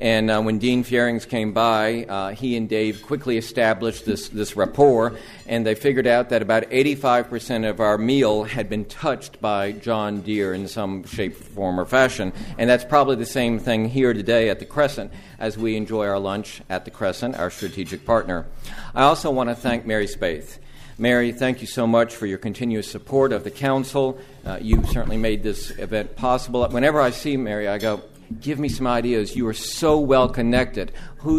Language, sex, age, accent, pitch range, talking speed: English, male, 50-69, American, 105-130 Hz, 195 wpm